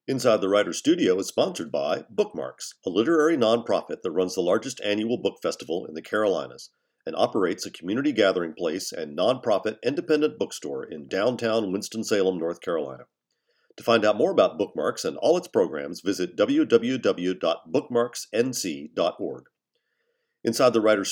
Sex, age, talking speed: male, 50-69, 145 wpm